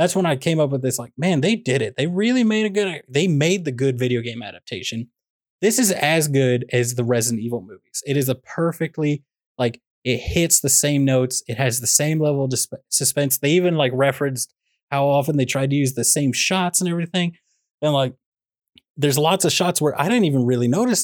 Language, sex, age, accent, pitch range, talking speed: English, male, 20-39, American, 125-170 Hz, 220 wpm